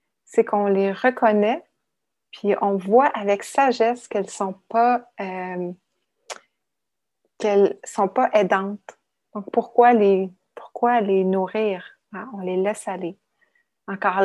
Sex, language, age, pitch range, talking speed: female, English, 30-49, 190-230 Hz, 110 wpm